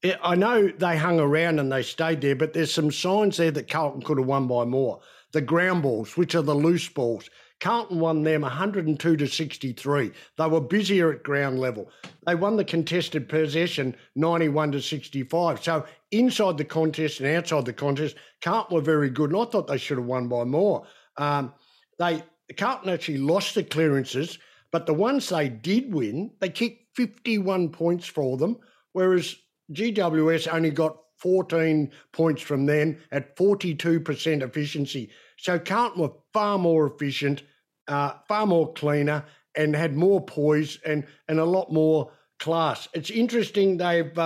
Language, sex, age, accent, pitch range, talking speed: English, male, 60-79, Australian, 150-180 Hz, 165 wpm